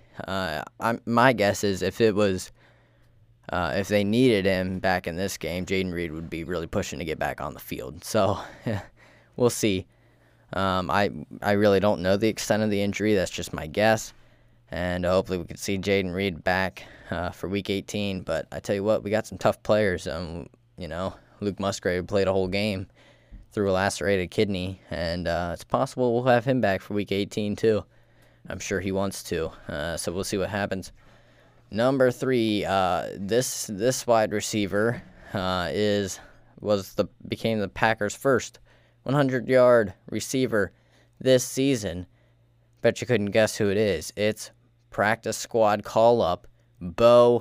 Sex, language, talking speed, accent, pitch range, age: male, English, 170 wpm, American, 95-115 Hz, 10-29